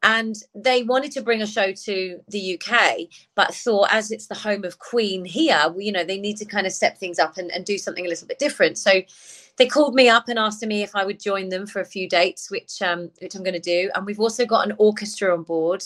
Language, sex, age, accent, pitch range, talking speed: English, female, 30-49, British, 190-250 Hz, 265 wpm